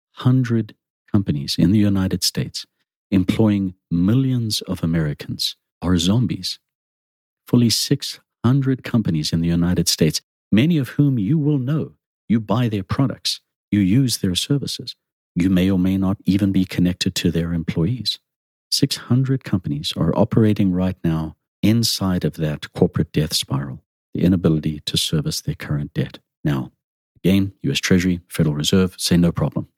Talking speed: 145 wpm